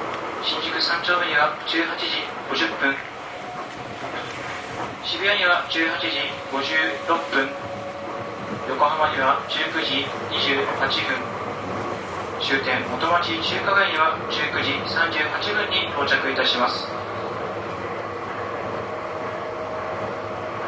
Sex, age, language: male, 40-59, Japanese